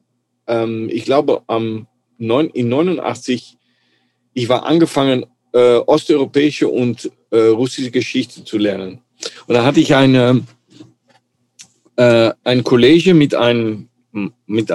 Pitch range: 115-135 Hz